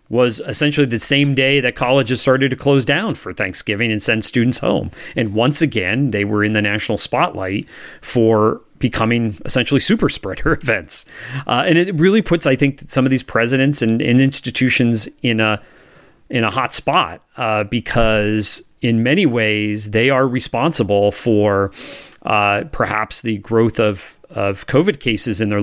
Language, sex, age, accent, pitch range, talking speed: English, male, 30-49, American, 110-135 Hz, 165 wpm